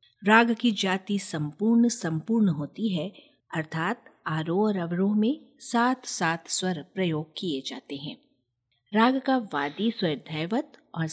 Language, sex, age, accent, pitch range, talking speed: Hindi, female, 50-69, native, 160-230 Hz, 135 wpm